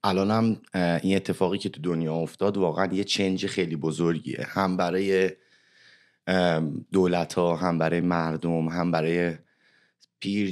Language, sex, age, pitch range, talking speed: Persian, male, 30-49, 85-100 Hz, 130 wpm